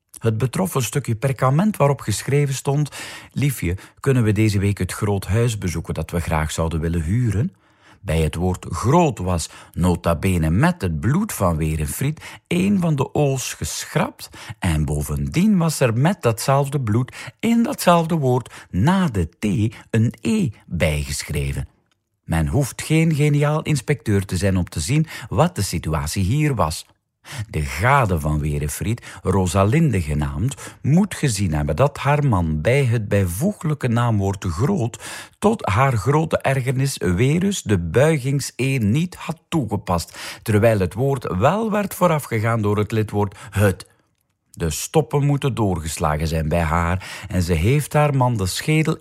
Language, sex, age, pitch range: Dutch, male, 50-69, 90-145 Hz